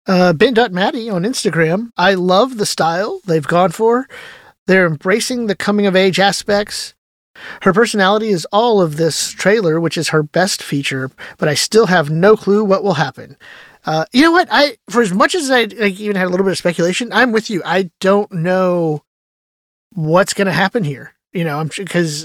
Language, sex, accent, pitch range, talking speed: English, male, American, 155-205 Hz, 195 wpm